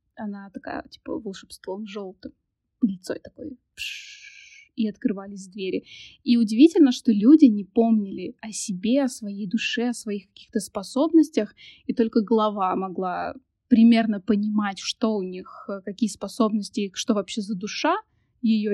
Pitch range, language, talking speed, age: 205-245 Hz, Russian, 135 wpm, 20-39